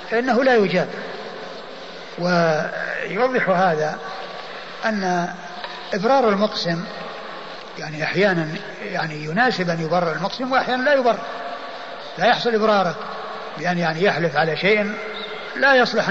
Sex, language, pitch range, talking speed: male, Arabic, 165-205 Hz, 110 wpm